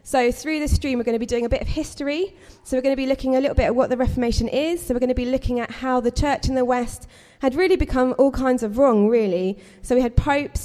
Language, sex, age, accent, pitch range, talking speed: English, female, 20-39, British, 225-265 Hz, 295 wpm